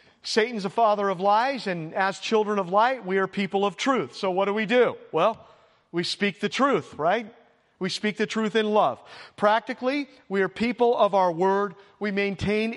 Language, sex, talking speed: English, male, 195 wpm